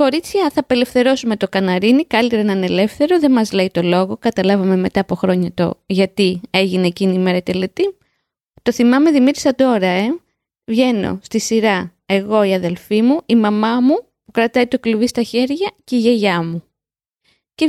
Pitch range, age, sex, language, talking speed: 205-260 Hz, 20-39, female, Greek, 175 wpm